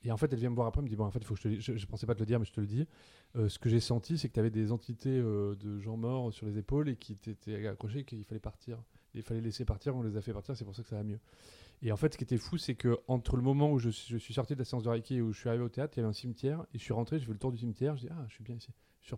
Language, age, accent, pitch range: French, 30-49, French, 110-130 Hz